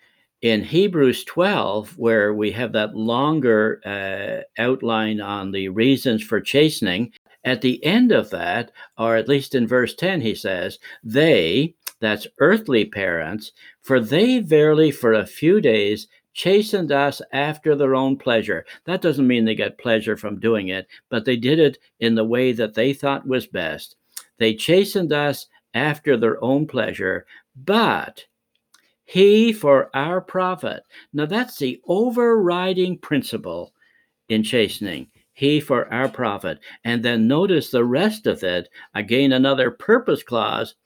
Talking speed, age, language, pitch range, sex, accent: 145 wpm, 60-79, English, 110-155 Hz, male, American